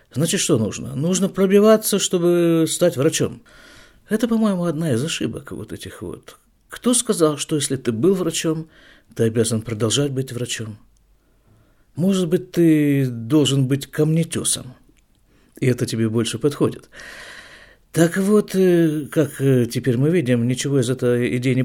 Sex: male